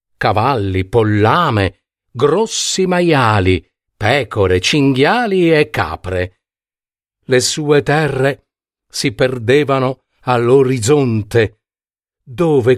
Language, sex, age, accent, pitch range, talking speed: Italian, male, 50-69, native, 100-150 Hz, 70 wpm